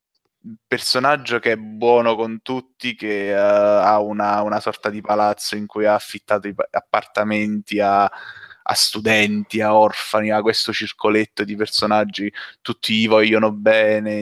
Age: 20-39